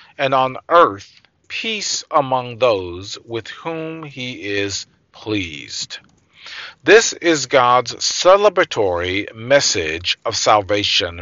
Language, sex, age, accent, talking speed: English, male, 40-59, American, 95 wpm